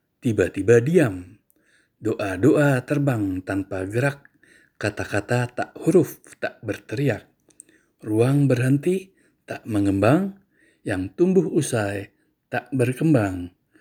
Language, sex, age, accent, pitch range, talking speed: Indonesian, male, 60-79, native, 100-145 Hz, 85 wpm